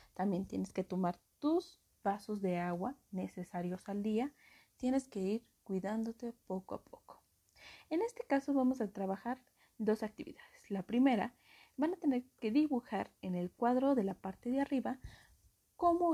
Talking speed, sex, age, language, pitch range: 155 wpm, female, 30-49, Spanish, 185-255 Hz